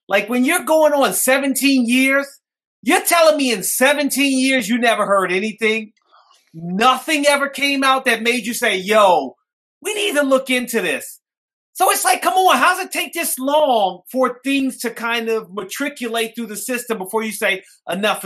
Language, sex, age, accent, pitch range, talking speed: English, male, 30-49, American, 195-260 Hz, 185 wpm